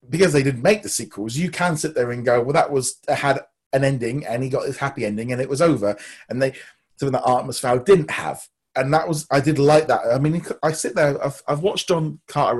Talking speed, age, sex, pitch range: 250 wpm, 30-49, male, 125-160 Hz